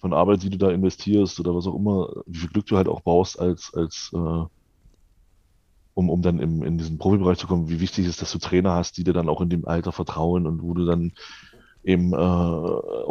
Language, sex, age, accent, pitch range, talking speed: German, male, 20-39, German, 85-100 Hz, 220 wpm